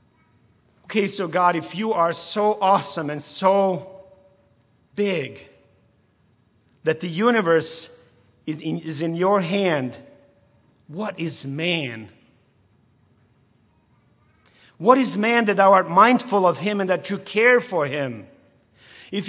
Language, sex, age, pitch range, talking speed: English, male, 40-59, 150-215 Hz, 115 wpm